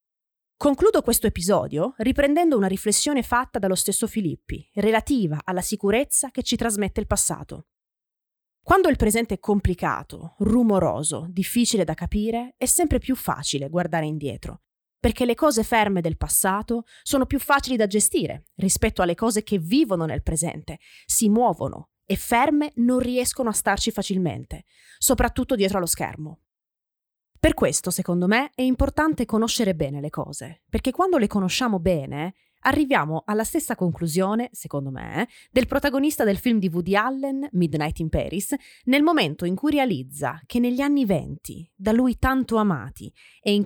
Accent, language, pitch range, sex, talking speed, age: native, Italian, 175-250 Hz, female, 150 wpm, 20-39